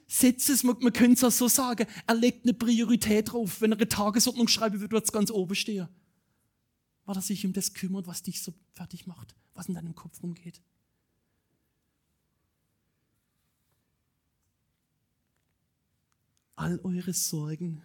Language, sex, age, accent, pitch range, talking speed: German, male, 40-59, German, 160-215 Hz, 140 wpm